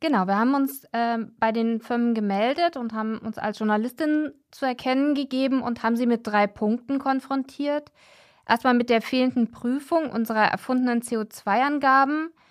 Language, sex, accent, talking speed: German, female, German, 155 wpm